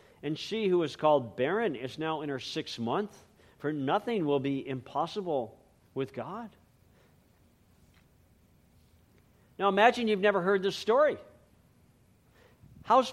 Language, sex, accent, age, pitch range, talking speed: English, male, American, 50-69, 150-225 Hz, 125 wpm